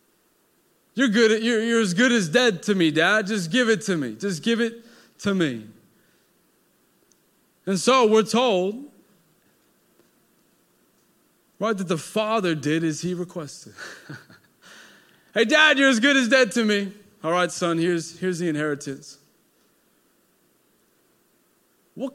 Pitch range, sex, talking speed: 165-235 Hz, male, 135 wpm